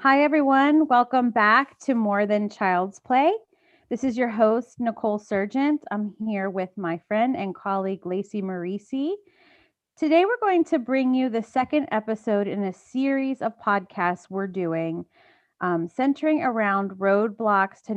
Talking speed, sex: 150 wpm, female